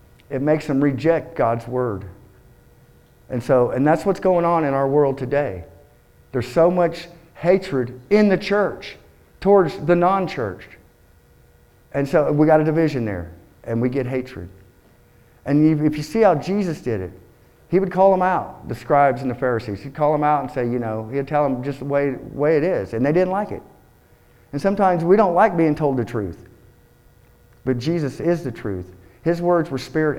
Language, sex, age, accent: English, male, 50-69, American